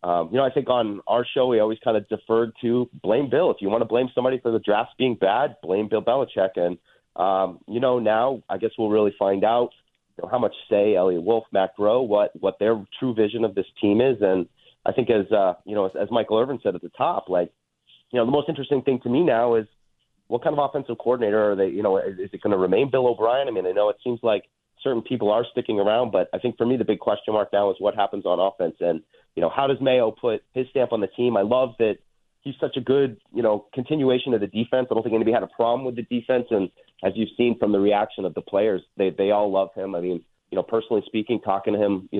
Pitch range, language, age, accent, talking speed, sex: 100-125 Hz, English, 30-49, American, 270 wpm, male